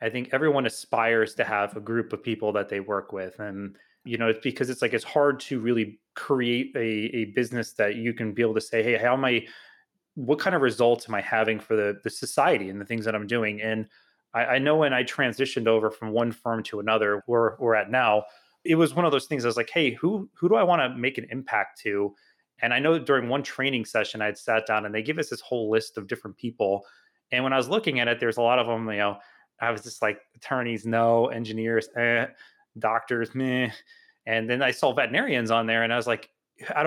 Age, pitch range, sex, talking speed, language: 30-49, 110-130 Hz, male, 245 wpm, English